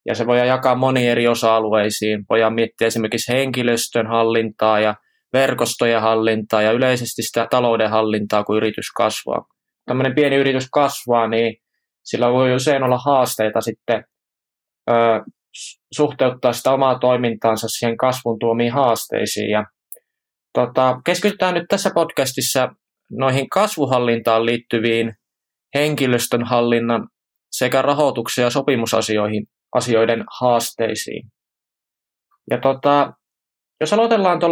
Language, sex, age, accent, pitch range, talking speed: Finnish, male, 20-39, native, 115-135 Hz, 110 wpm